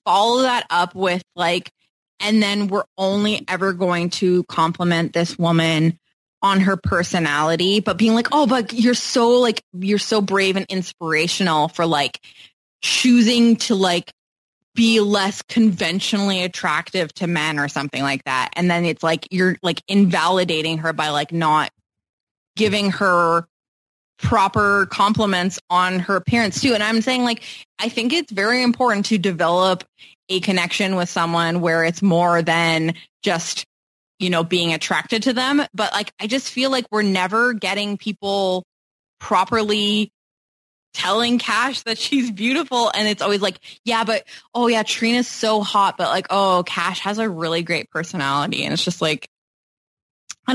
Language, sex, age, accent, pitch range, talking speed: English, female, 20-39, American, 175-225 Hz, 155 wpm